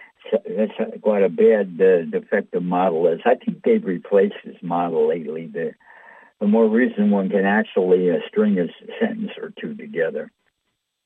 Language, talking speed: English, 155 wpm